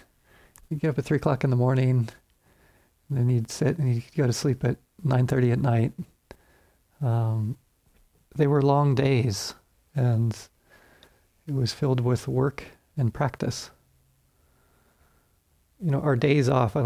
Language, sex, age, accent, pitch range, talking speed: English, male, 40-59, American, 120-150 Hz, 150 wpm